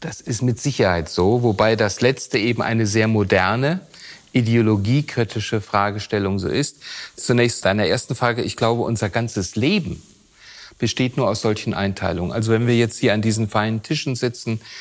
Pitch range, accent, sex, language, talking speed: 105-125 Hz, German, male, German, 160 wpm